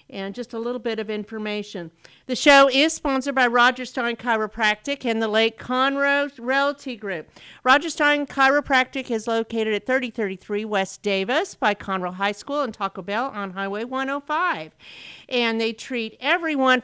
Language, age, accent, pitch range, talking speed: English, 50-69, American, 210-275 Hz, 155 wpm